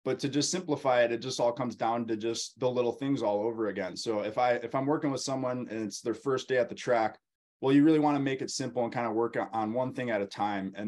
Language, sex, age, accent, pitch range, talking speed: English, male, 20-39, American, 105-125 Hz, 290 wpm